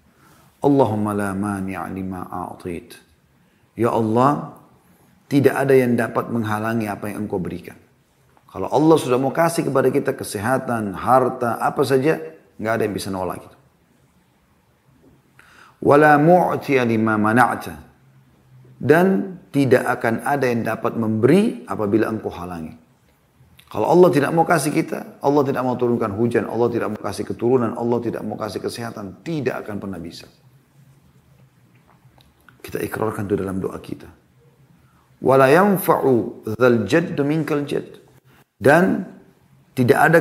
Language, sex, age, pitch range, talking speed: Indonesian, male, 30-49, 105-135 Hz, 105 wpm